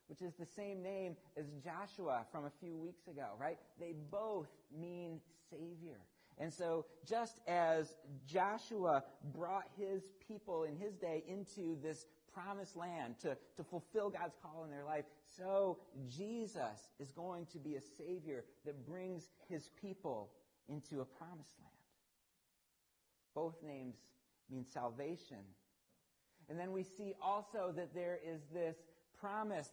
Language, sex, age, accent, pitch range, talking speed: English, male, 40-59, American, 145-175 Hz, 140 wpm